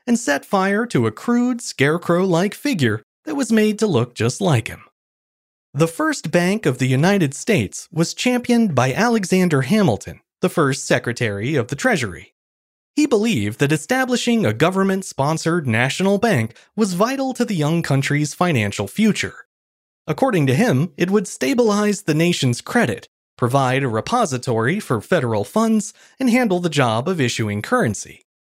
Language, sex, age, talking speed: English, male, 30-49, 150 wpm